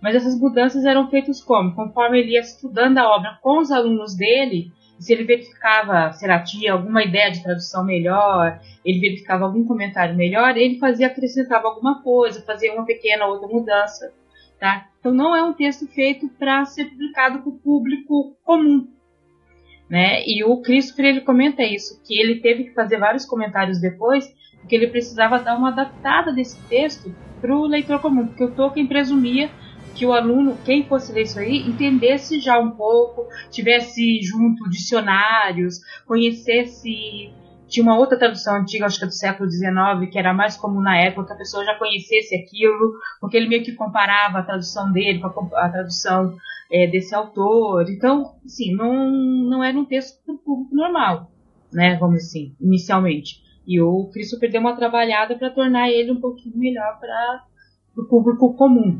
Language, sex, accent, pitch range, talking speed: Portuguese, female, Brazilian, 195-260 Hz, 175 wpm